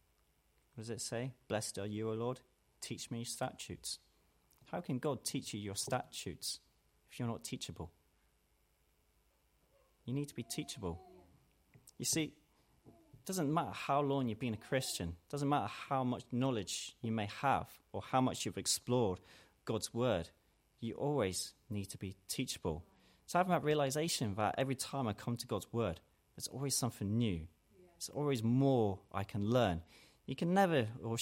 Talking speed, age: 165 wpm, 30-49